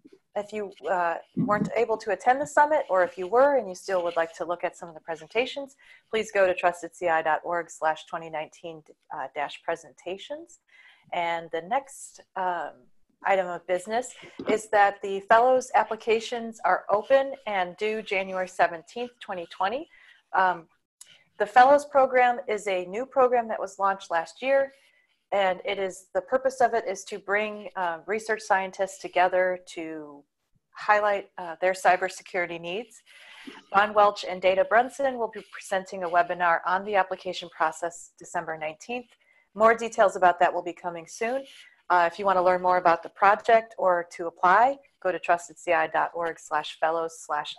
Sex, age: female, 30-49